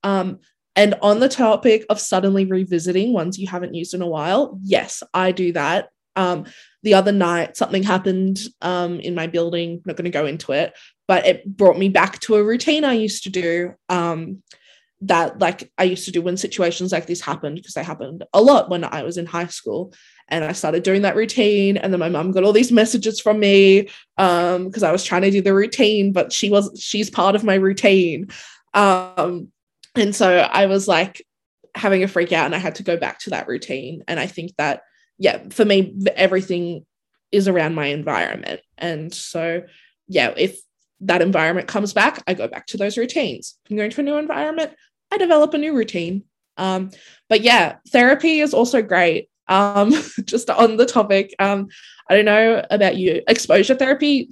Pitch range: 175-215 Hz